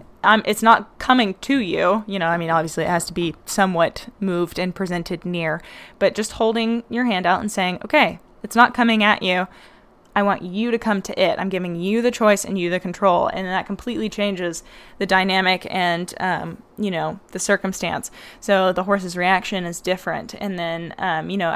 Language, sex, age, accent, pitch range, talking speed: English, female, 10-29, American, 185-220 Hz, 205 wpm